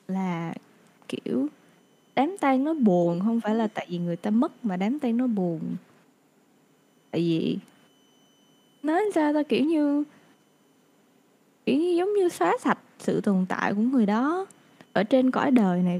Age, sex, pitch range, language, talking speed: 10-29, female, 195-260 Hz, Vietnamese, 160 wpm